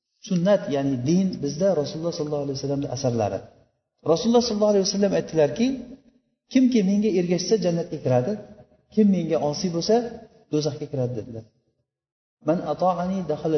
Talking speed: 145 wpm